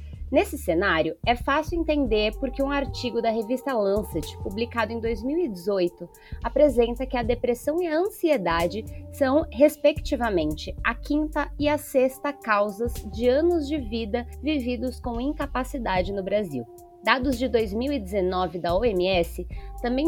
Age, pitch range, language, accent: 20-39, 210-275 Hz, Portuguese, Brazilian